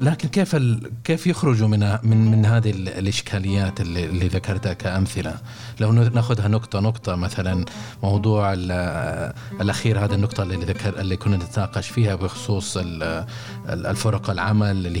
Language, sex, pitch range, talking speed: Arabic, male, 95-120 Hz, 125 wpm